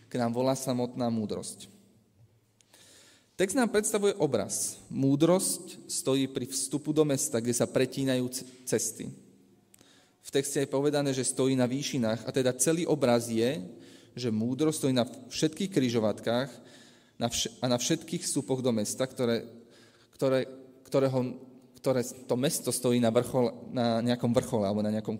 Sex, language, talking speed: male, Slovak, 130 wpm